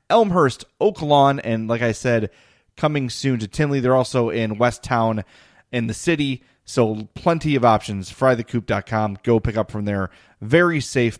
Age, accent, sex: 30-49, American, male